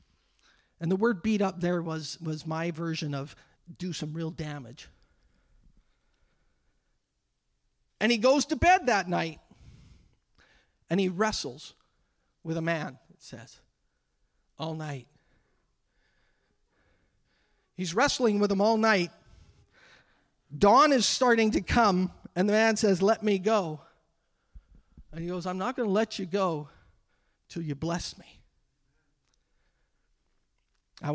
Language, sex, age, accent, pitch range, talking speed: English, male, 50-69, American, 145-205 Hz, 125 wpm